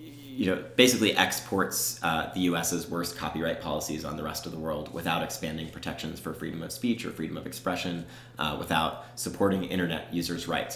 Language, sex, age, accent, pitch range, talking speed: English, male, 30-49, American, 85-100 Hz, 185 wpm